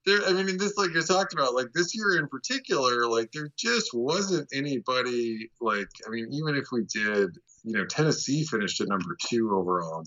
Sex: male